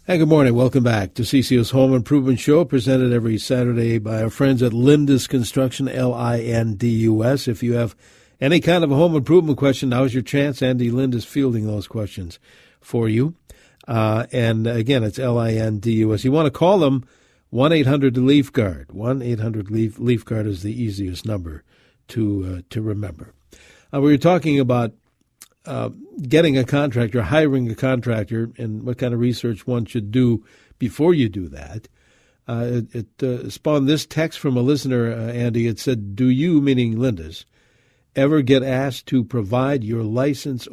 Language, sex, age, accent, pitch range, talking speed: English, male, 60-79, American, 115-135 Hz, 160 wpm